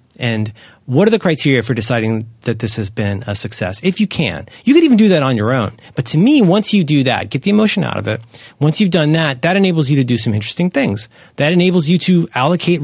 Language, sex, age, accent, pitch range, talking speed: English, male, 30-49, American, 115-175 Hz, 250 wpm